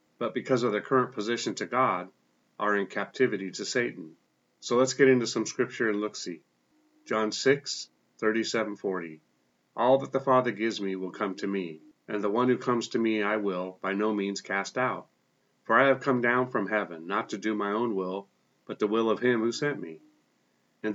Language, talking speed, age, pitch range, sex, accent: English, 200 wpm, 40-59, 100-125 Hz, male, American